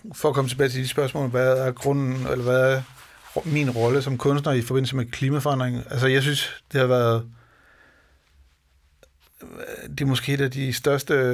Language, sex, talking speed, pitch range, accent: Danish, male, 175 wpm, 120-135 Hz, native